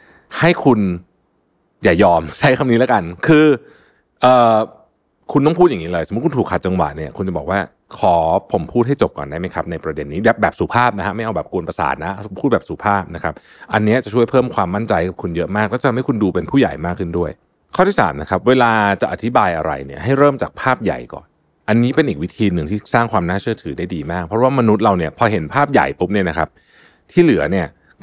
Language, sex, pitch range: Thai, male, 90-140 Hz